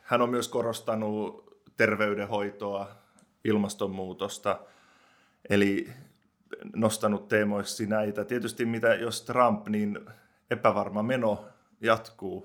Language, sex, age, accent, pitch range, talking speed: Finnish, male, 20-39, native, 100-115 Hz, 85 wpm